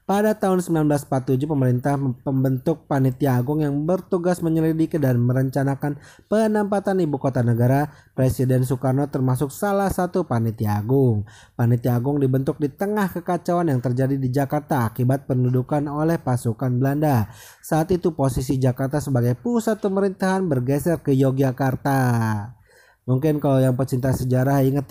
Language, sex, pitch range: Indonesian, male, 125-165 Hz